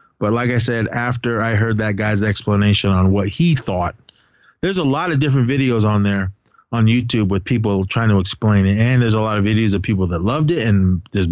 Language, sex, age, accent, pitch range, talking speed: English, male, 30-49, American, 95-120 Hz, 230 wpm